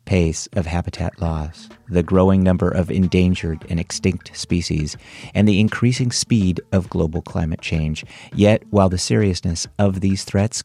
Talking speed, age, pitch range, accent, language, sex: 150 wpm, 40-59, 90-110 Hz, American, English, male